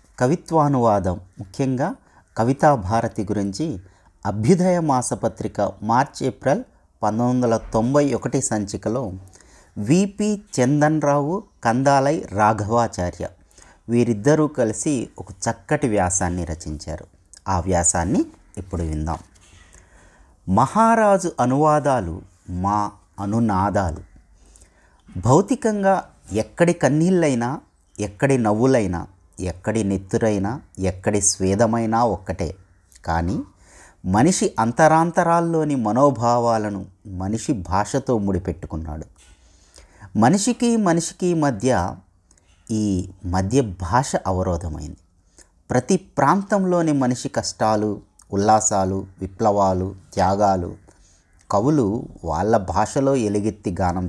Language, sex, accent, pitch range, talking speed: Telugu, male, native, 90-130 Hz, 75 wpm